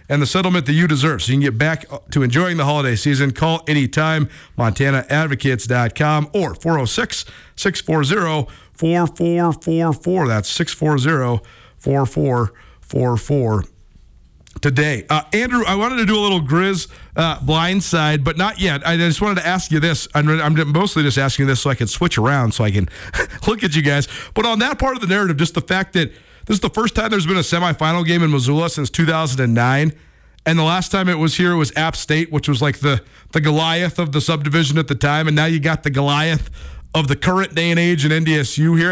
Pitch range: 140-175 Hz